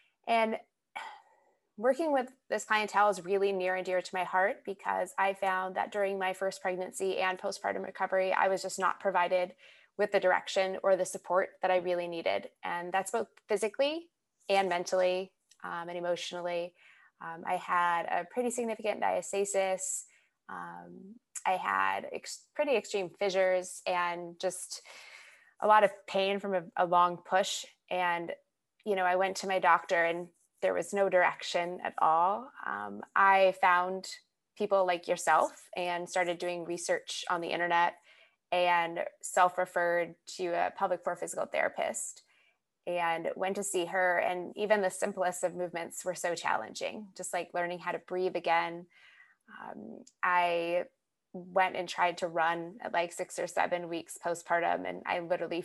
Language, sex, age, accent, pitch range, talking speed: English, female, 20-39, American, 175-195 Hz, 155 wpm